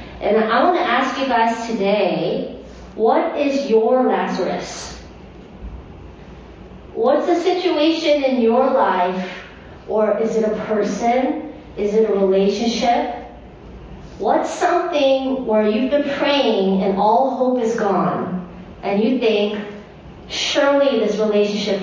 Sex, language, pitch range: female, English, 190-255 Hz